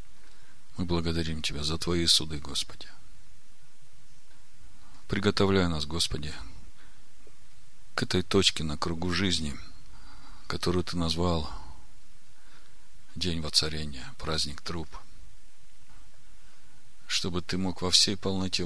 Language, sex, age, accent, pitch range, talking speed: Russian, male, 40-59, native, 80-95 Hz, 95 wpm